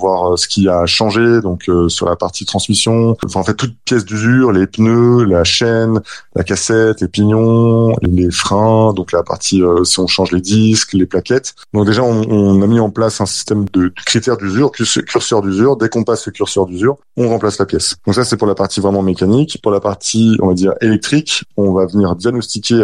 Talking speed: 220 wpm